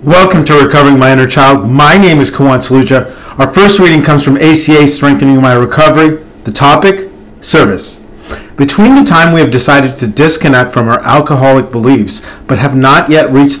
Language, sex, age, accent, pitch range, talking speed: English, male, 40-59, American, 115-140 Hz, 175 wpm